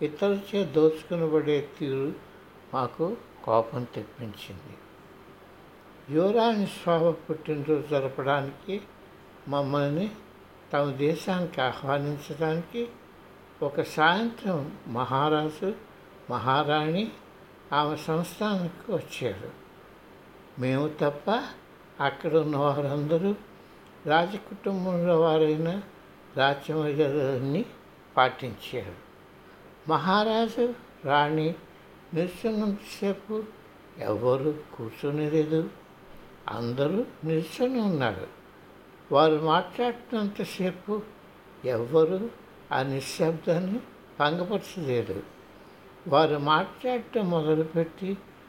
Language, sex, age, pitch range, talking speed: Telugu, male, 60-79, 145-190 Hz, 60 wpm